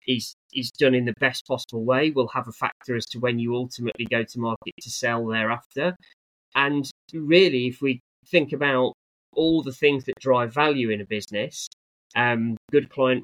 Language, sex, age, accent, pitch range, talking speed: English, male, 20-39, British, 115-130 Hz, 180 wpm